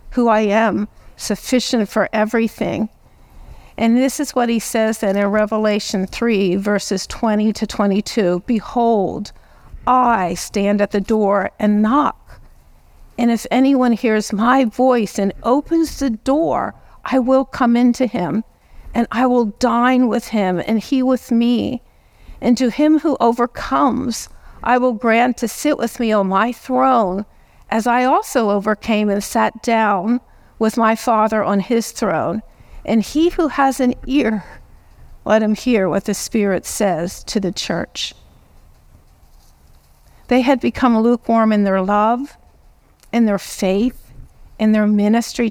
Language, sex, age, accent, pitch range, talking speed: English, female, 50-69, American, 205-245 Hz, 145 wpm